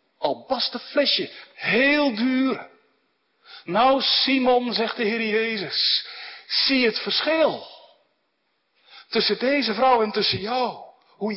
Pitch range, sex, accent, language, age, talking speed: 225-280 Hz, male, Dutch, Dutch, 60-79, 105 wpm